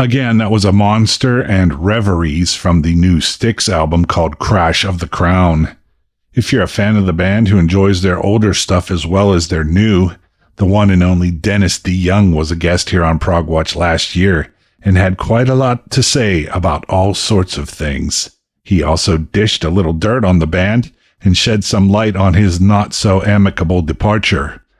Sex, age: male, 50-69